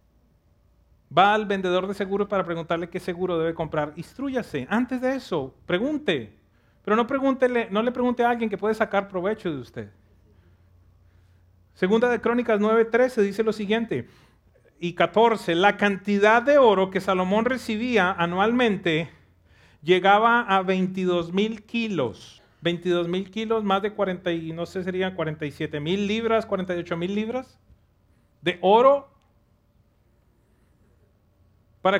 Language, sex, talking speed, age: English, male, 125 wpm, 40-59